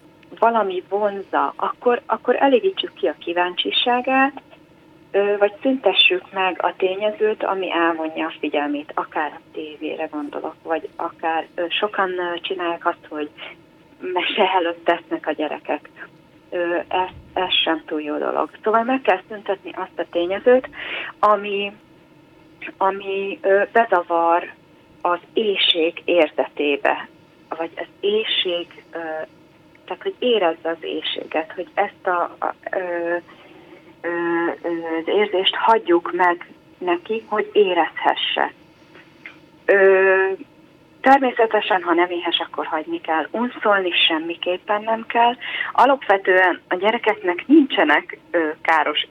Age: 30-49